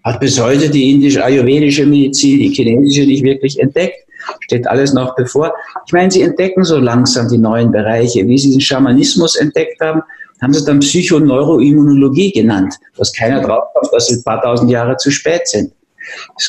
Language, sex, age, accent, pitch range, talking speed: German, male, 50-69, German, 130-185 Hz, 180 wpm